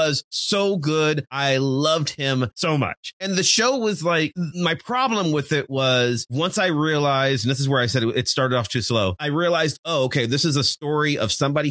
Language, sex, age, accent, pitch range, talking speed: English, male, 30-49, American, 115-145 Hz, 210 wpm